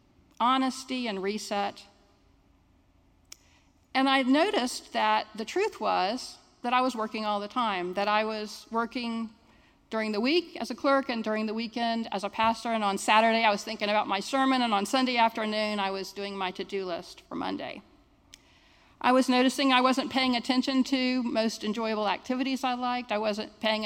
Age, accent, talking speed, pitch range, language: 50-69, American, 180 wpm, 205-255 Hz, English